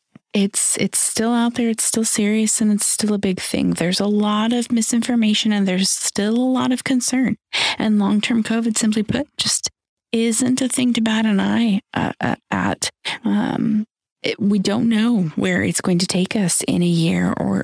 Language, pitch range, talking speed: English, 185-230 Hz, 185 wpm